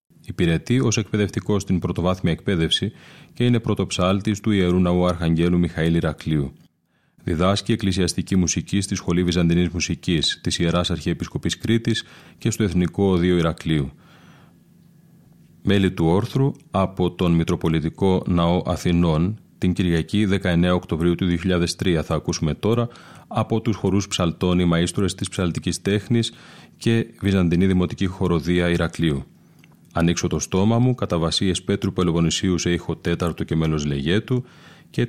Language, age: Greek, 30-49